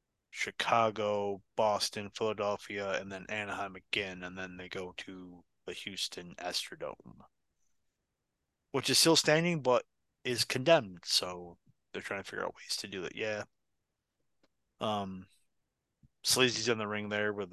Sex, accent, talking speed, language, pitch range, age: male, American, 135 wpm, English, 95-125 Hz, 20-39